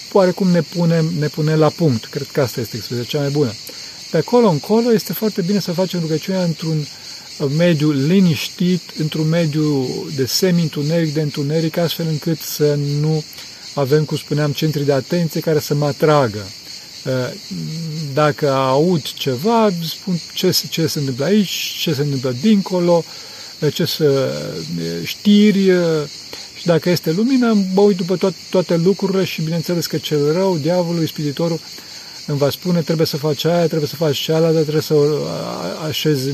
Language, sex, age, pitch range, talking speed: Romanian, male, 40-59, 145-175 Hz, 155 wpm